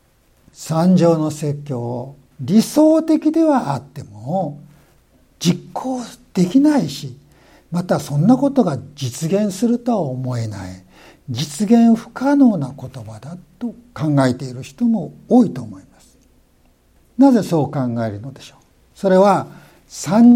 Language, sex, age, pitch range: Japanese, male, 60-79, 140-210 Hz